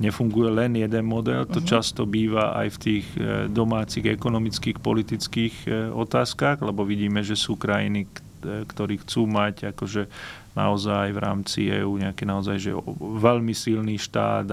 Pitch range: 100-115 Hz